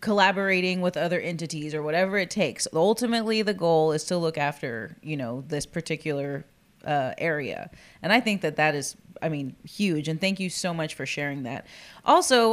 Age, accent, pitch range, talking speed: 30-49, American, 165-205 Hz, 185 wpm